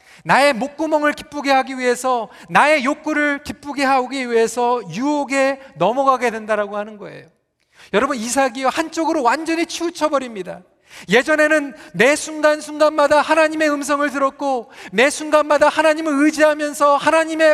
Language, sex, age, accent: Korean, male, 40-59, native